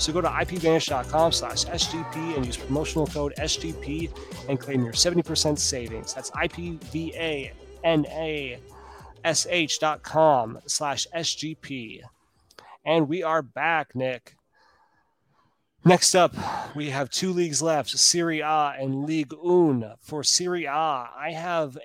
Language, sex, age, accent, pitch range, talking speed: English, male, 30-49, American, 125-155 Hz, 115 wpm